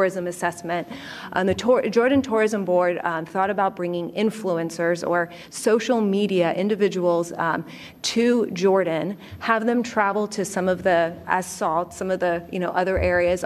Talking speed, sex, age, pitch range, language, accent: 160 wpm, female, 30-49, 175-200 Hz, English, American